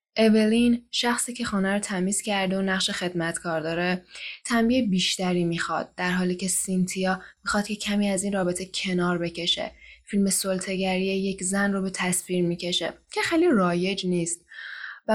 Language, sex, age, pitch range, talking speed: Persian, female, 10-29, 180-225 Hz, 150 wpm